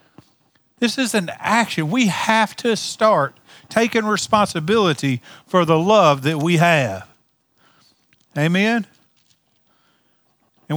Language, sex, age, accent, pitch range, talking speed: English, male, 40-59, American, 145-210 Hz, 100 wpm